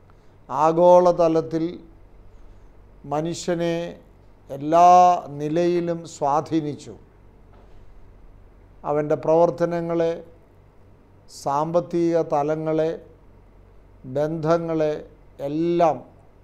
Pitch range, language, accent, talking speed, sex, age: 105-165 Hz, Malayalam, native, 40 wpm, male, 50-69